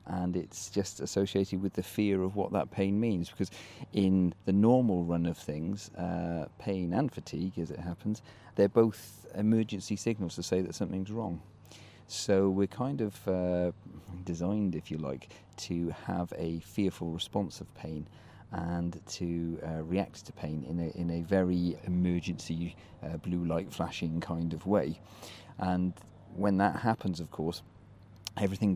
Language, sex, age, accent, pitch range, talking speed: English, male, 40-59, British, 85-105 Hz, 160 wpm